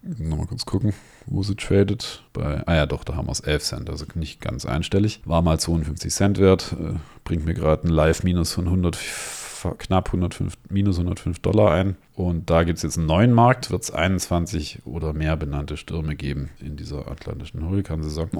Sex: male